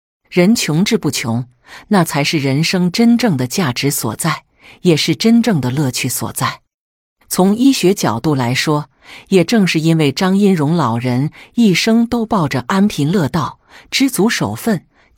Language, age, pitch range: Chinese, 50-69, 135-195 Hz